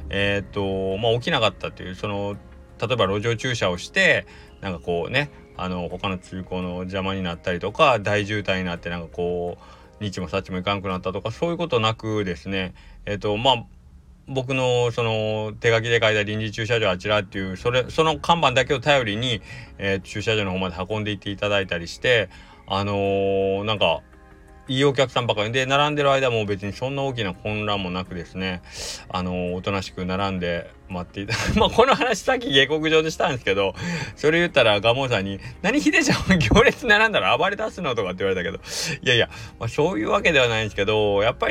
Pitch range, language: 95-125 Hz, Japanese